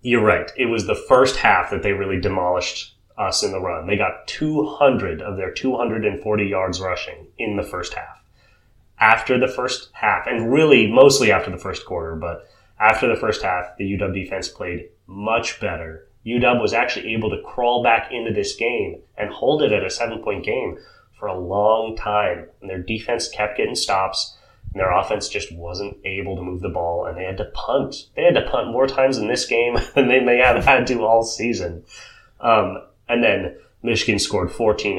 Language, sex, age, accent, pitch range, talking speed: English, male, 30-49, American, 90-120 Hz, 195 wpm